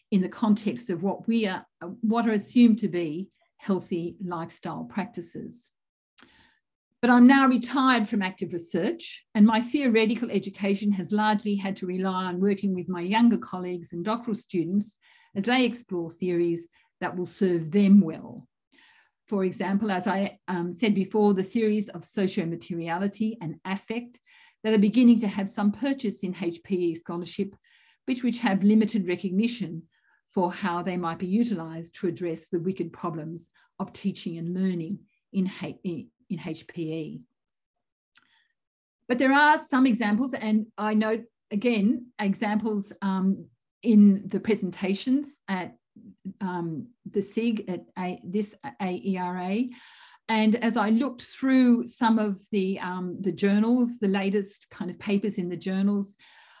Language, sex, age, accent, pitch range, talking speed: English, female, 50-69, Australian, 180-225 Hz, 145 wpm